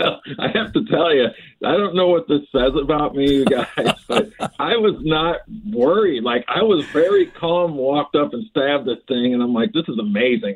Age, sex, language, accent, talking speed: 50-69, male, English, American, 215 wpm